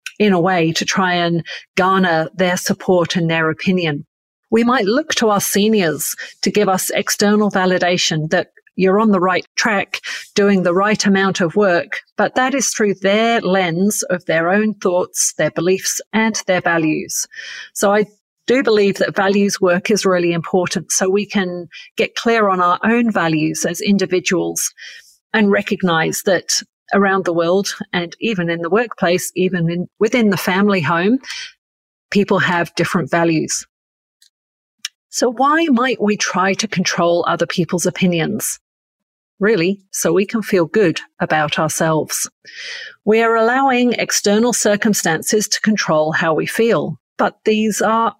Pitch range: 175-215 Hz